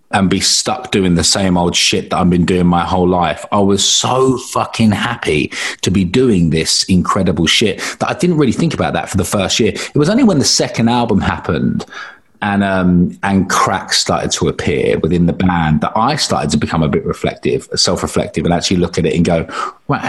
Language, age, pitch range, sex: English, 30-49, 95-135 Hz, male